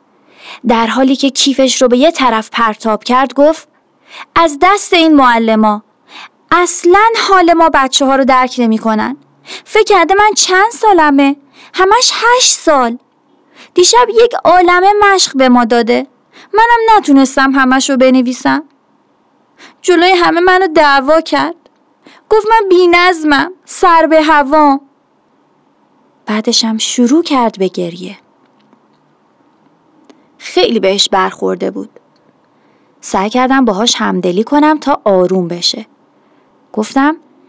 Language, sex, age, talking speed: Persian, female, 30-49, 120 wpm